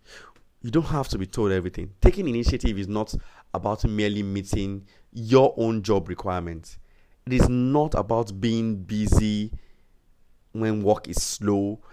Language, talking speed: English, 140 wpm